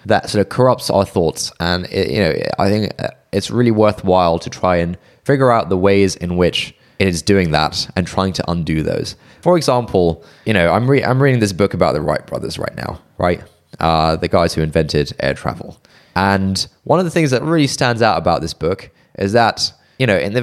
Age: 20-39